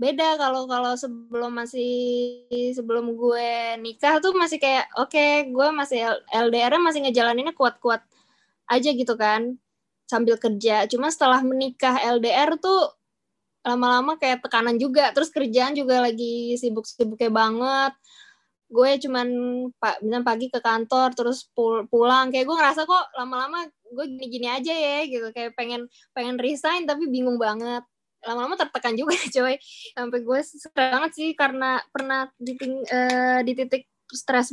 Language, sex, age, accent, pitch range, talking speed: Indonesian, female, 20-39, native, 235-275 Hz, 140 wpm